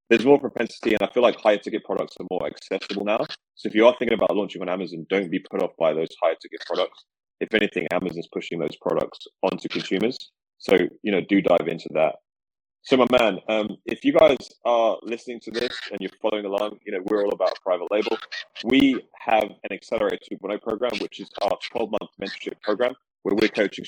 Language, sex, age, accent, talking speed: English, male, 20-39, British, 210 wpm